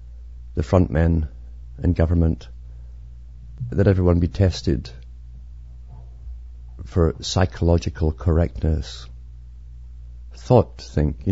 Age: 50-69